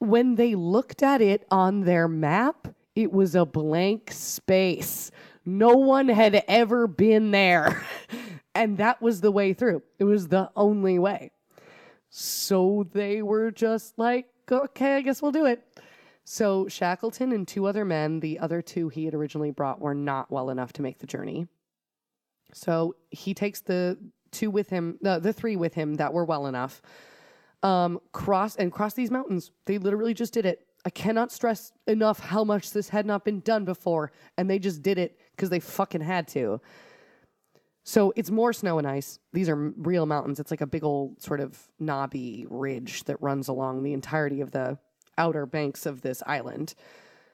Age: 20-39